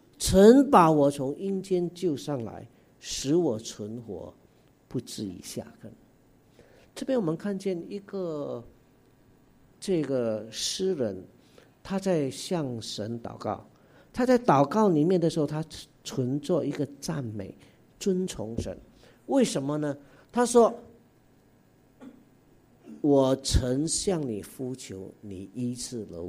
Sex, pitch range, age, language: male, 115-165 Hz, 50-69, English